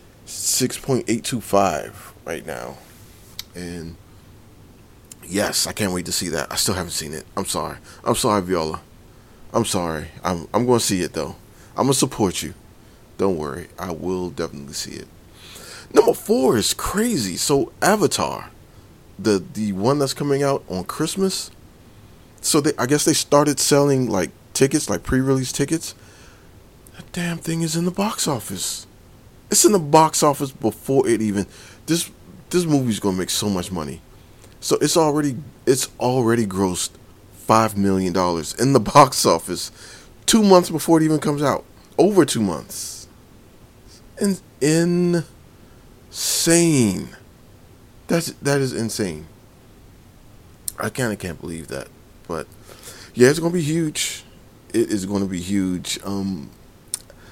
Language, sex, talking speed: English, male, 145 wpm